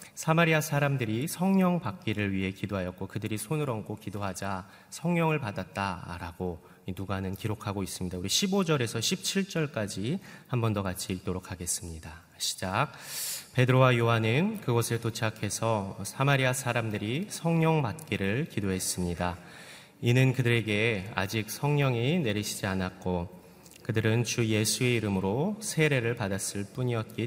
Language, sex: Korean, male